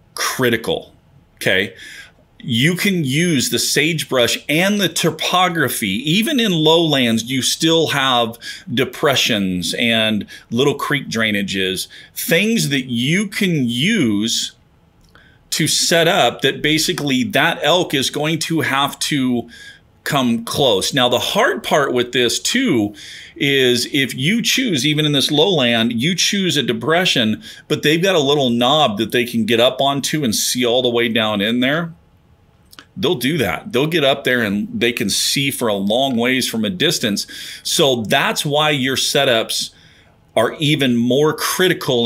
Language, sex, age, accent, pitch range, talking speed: English, male, 40-59, American, 120-165 Hz, 150 wpm